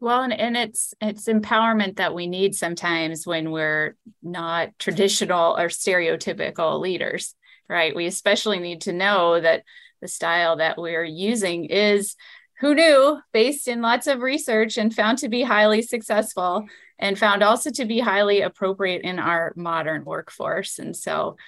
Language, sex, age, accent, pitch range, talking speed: English, female, 30-49, American, 185-230 Hz, 155 wpm